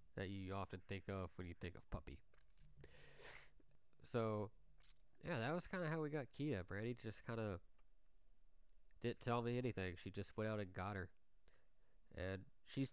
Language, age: English, 20-39